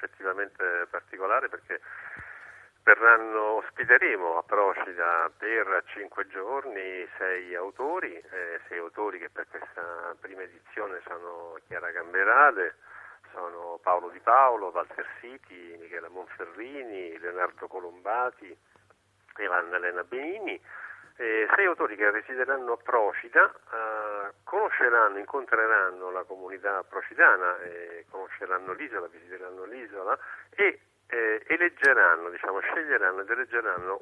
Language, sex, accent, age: Italian, male, native, 40-59